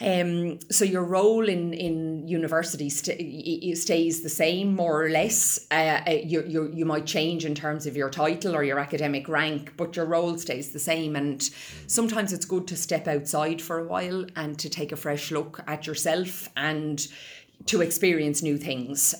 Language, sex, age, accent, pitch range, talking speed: English, female, 30-49, Irish, 145-170 Hz, 180 wpm